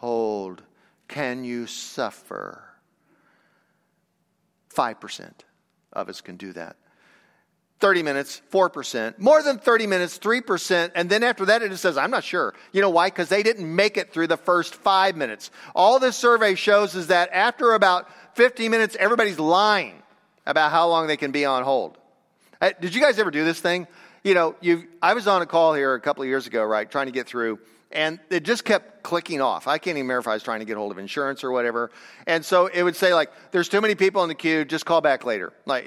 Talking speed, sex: 210 wpm, male